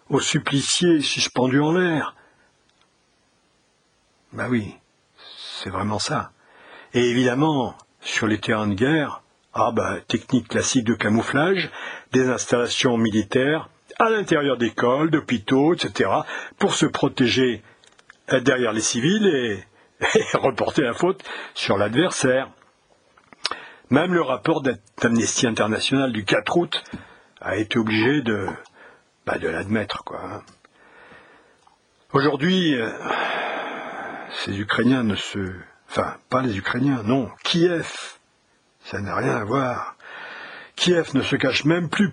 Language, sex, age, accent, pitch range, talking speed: French, male, 60-79, French, 120-160 Hz, 115 wpm